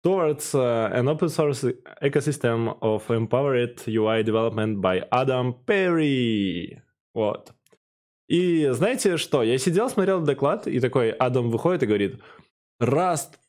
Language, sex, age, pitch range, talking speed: Russian, male, 20-39, 125-170 Hz, 115 wpm